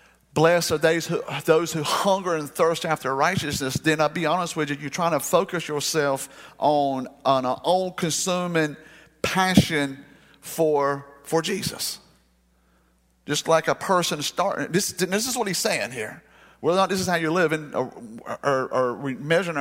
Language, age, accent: English, 50-69, American